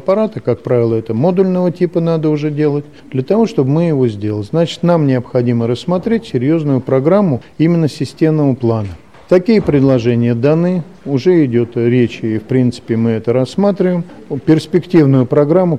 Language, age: Russian, 50-69